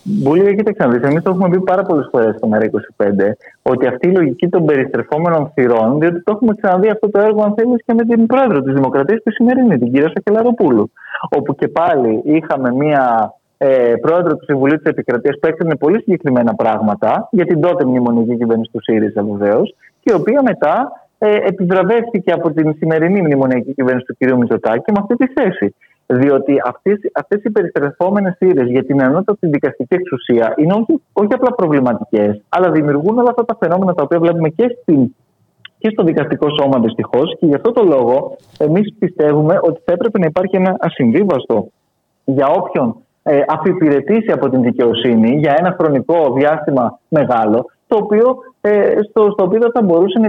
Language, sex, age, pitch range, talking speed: Greek, male, 30-49, 135-210 Hz, 170 wpm